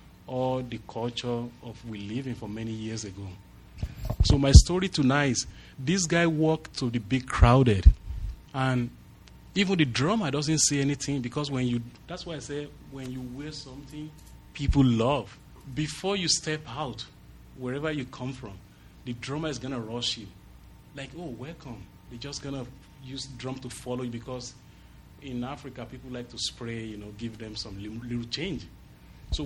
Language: English